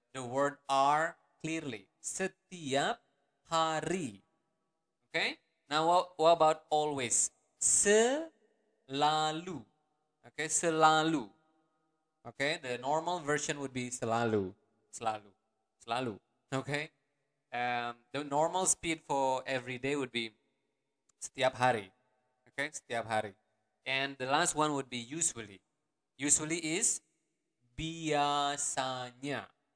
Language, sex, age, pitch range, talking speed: English, male, 20-39, 120-155 Hz, 100 wpm